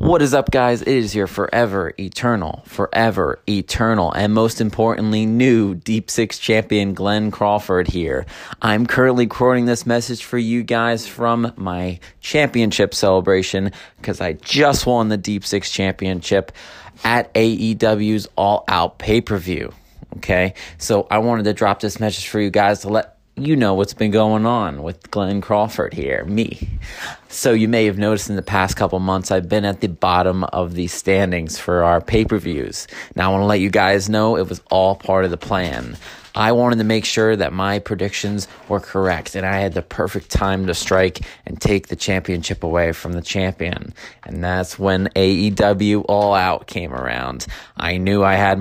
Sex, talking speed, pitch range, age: male, 180 wpm, 95-110 Hz, 30-49